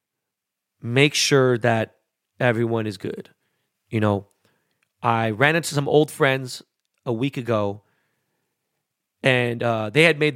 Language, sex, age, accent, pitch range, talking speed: English, male, 30-49, American, 120-155 Hz, 125 wpm